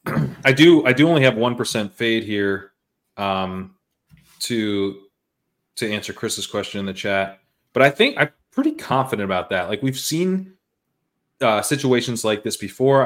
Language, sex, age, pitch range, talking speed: English, male, 20-39, 100-130 Hz, 155 wpm